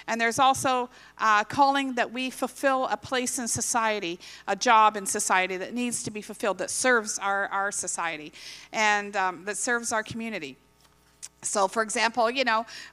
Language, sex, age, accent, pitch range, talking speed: English, female, 50-69, American, 210-260 Hz, 170 wpm